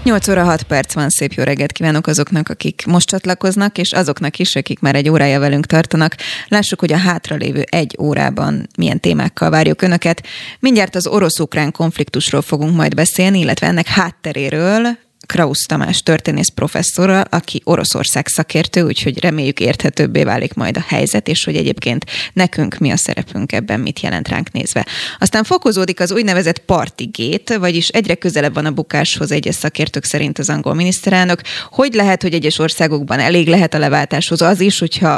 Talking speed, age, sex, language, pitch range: 165 wpm, 20-39, female, Hungarian, 155-185 Hz